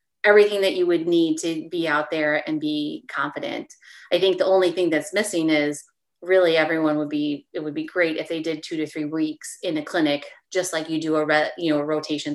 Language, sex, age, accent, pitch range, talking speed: English, female, 30-49, American, 160-200 Hz, 235 wpm